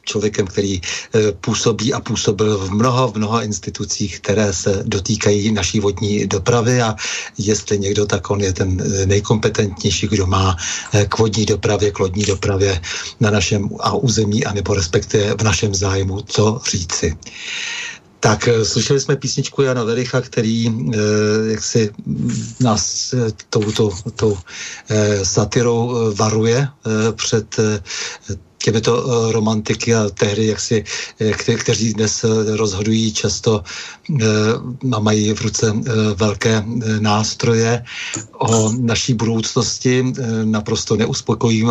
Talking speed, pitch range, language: 120 wpm, 105-120 Hz, Czech